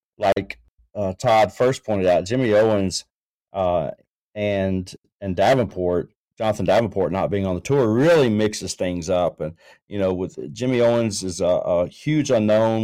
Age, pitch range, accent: 40-59, 95-120 Hz, American